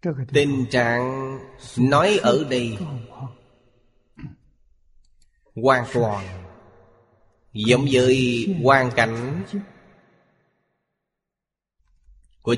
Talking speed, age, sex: 55 wpm, 20-39, male